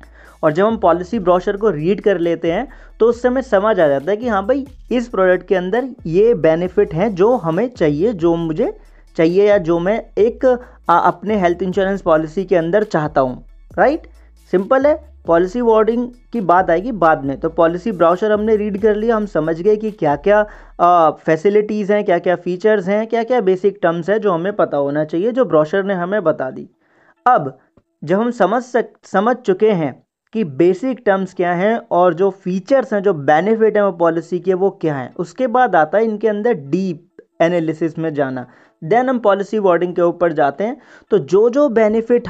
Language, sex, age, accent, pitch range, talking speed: Hindi, male, 30-49, native, 170-220 Hz, 195 wpm